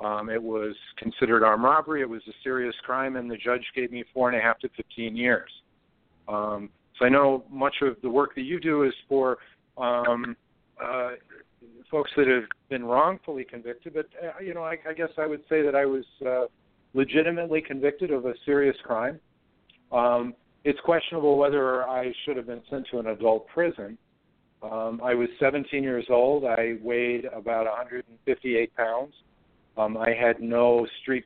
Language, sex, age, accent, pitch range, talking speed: English, male, 50-69, American, 110-130 Hz, 180 wpm